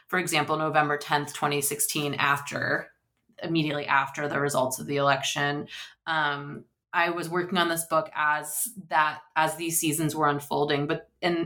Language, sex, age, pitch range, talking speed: English, female, 20-39, 145-175 Hz, 155 wpm